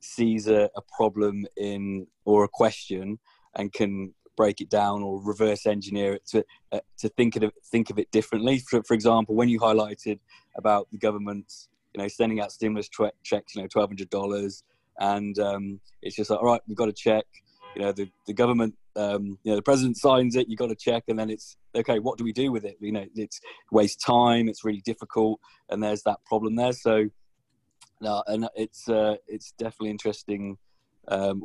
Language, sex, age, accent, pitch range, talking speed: English, male, 20-39, British, 100-110 Hz, 205 wpm